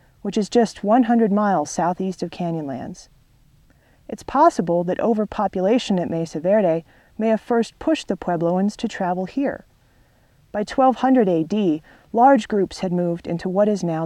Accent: American